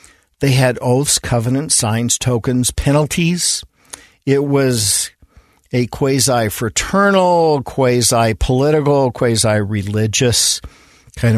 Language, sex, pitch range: English, male, 105-130 Hz